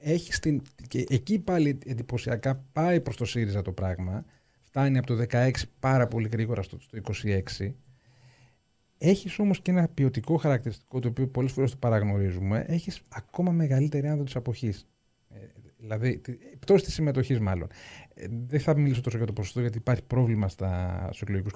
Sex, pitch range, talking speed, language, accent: male, 110-160 Hz, 160 wpm, Greek, native